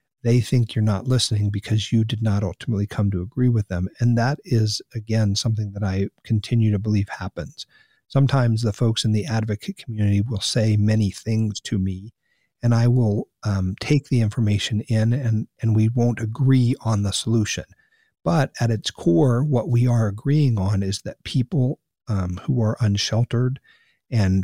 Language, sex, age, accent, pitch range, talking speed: English, male, 50-69, American, 100-120 Hz, 175 wpm